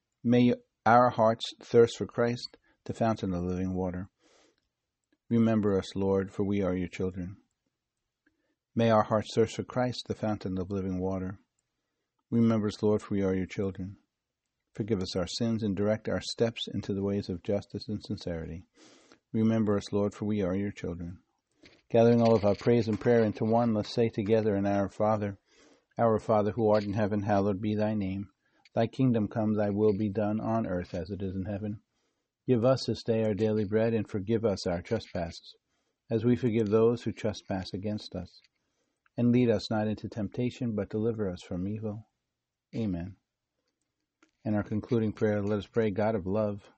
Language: English